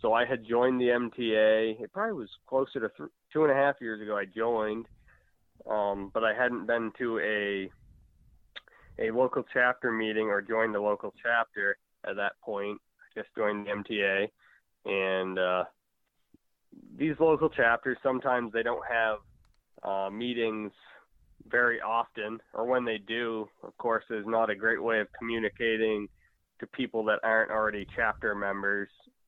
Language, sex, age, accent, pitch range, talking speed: English, male, 20-39, American, 100-115 Hz, 160 wpm